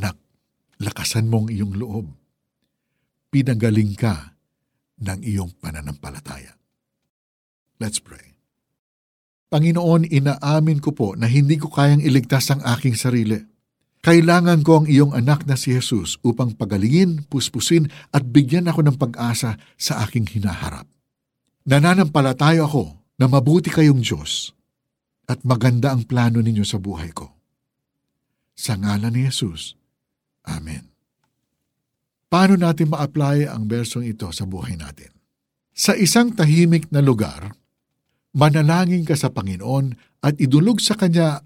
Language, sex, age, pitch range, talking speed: Filipino, male, 60-79, 110-150 Hz, 120 wpm